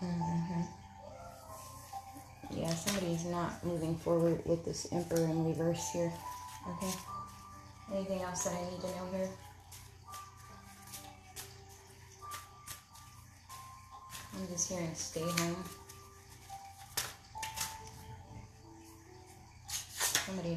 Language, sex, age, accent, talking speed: English, female, 20-39, American, 80 wpm